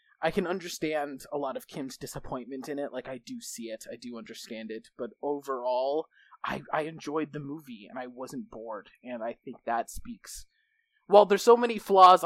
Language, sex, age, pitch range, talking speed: English, male, 20-39, 130-180 Hz, 195 wpm